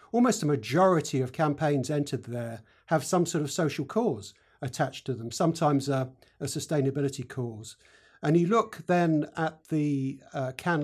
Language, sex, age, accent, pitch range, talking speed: English, male, 50-69, British, 135-170 Hz, 160 wpm